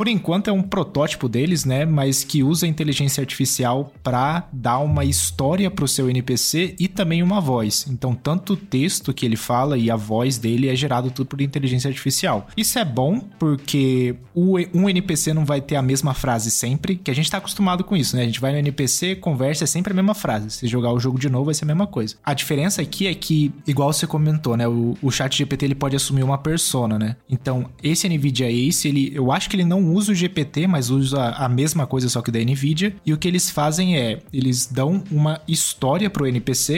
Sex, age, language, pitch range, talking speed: male, 20-39, Portuguese, 125-155 Hz, 230 wpm